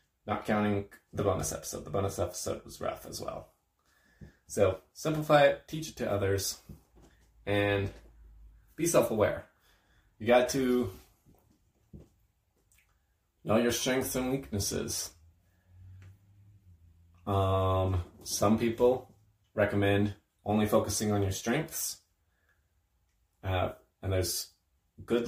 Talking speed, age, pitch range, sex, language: 100 wpm, 20-39, 90-105 Hz, male, English